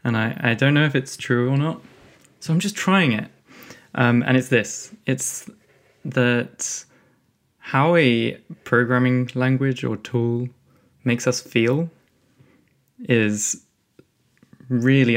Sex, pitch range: male, 120-150 Hz